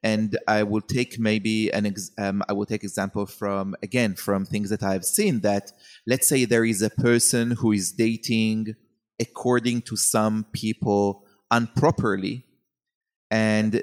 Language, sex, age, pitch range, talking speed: English, male, 30-49, 105-125 Hz, 155 wpm